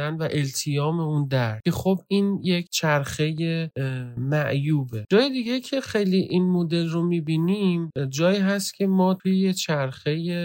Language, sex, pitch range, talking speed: Persian, male, 135-180 Hz, 140 wpm